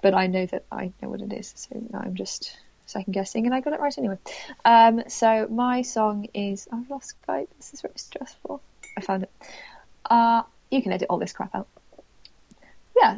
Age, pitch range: 20-39, 185-225 Hz